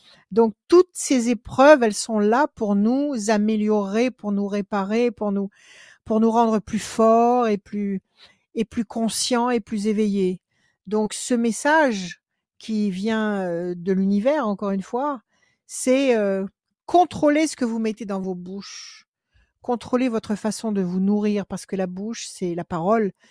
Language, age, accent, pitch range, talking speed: French, 60-79, French, 190-235 Hz, 155 wpm